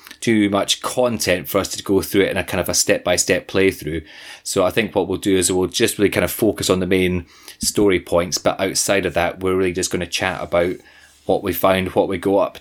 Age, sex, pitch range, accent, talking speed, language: 20-39, male, 95-110 Hz, British, 245 wpm, English